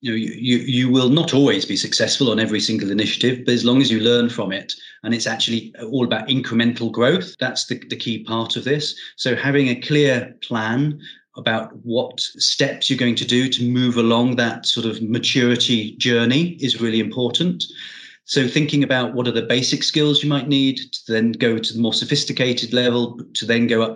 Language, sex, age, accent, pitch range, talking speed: English, male, 30-49, British, 115-135 Hz, 205 wpm